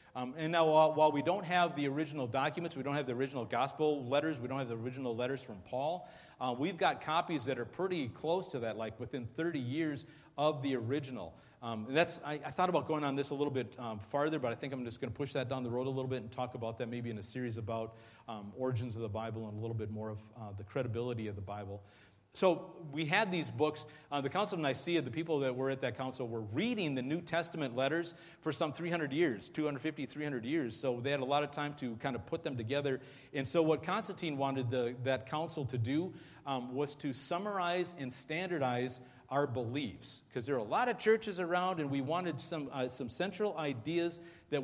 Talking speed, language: 235 wpm, English